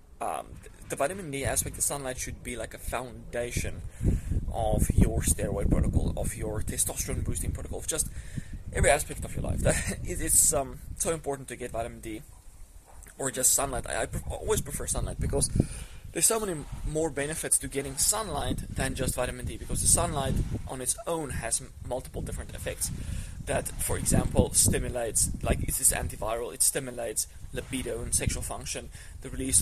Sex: male